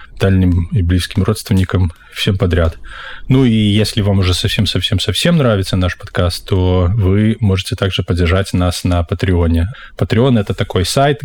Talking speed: 150 wpm